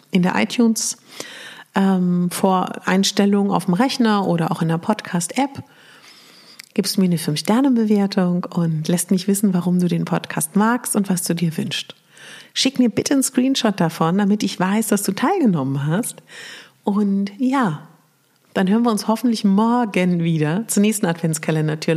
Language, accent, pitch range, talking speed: German, German, 170-245 Hz, 160 wpm